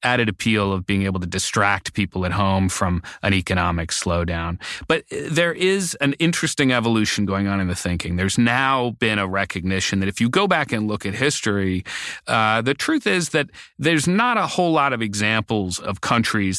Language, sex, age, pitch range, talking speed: English, male, 30-49, 95-115 Hz, 190 wpm